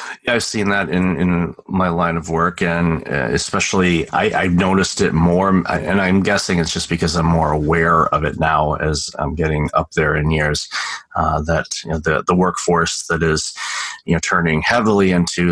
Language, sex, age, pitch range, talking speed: English, male, 30-49, 80-95 Hz, 195 wpm